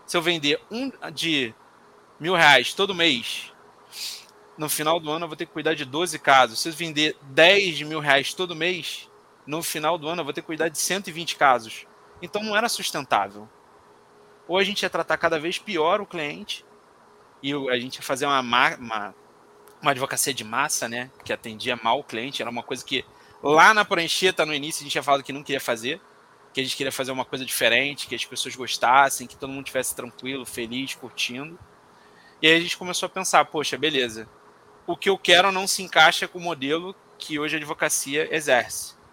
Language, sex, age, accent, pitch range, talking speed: Portuguese, male, 20-39, Brazilian, 130-165 Hz, 200 wpm